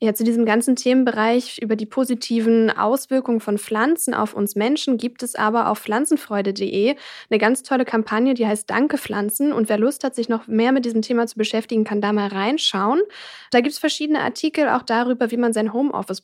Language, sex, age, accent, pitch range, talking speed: German, female, 10-29, German, 215-260 Hz, 200 wpm